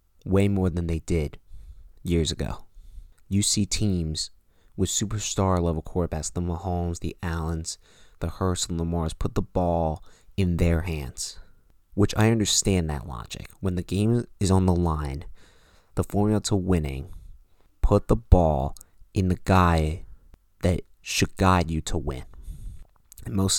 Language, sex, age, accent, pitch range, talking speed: English, male, 30-49, American, 80-95 Hz, 145 wpm